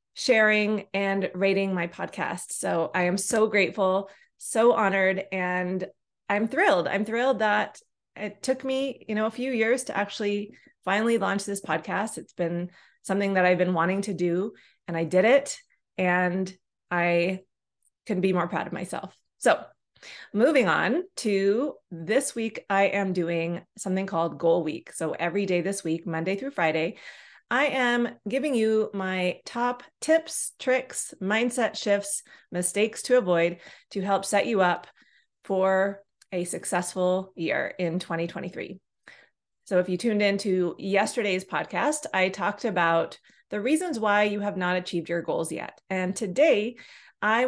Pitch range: 180-225 Hz